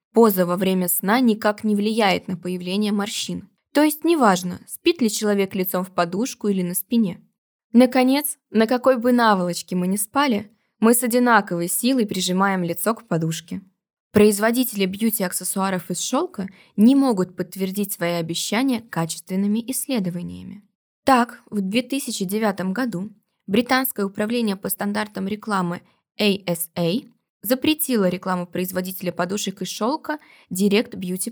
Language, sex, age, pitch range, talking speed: Russian, female, 20-39, 185-235 Hz, 130 wpm